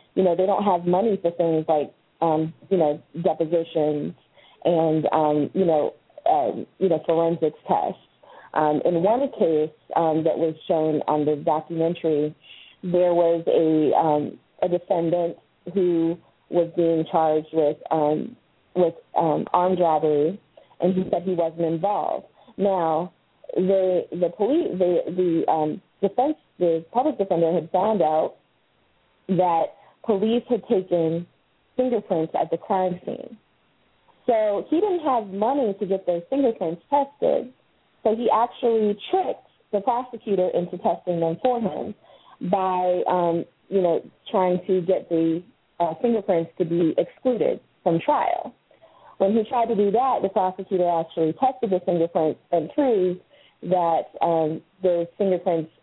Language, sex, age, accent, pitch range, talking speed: English, female, 30-49, American, 165-200 Hz, 145 wpm